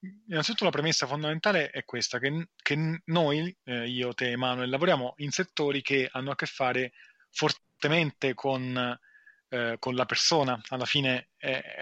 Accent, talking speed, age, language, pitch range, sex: native, 155 wpm, 20-39, Italian, 125-155 Hz, male